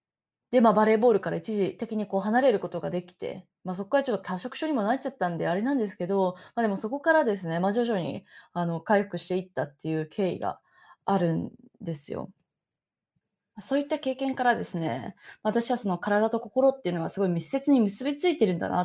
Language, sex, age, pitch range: Japanese, female, 20-39, 180-245 Hz